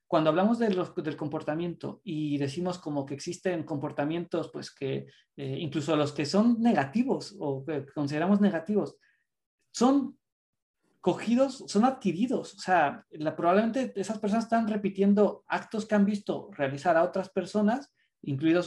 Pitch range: 155-205 Hz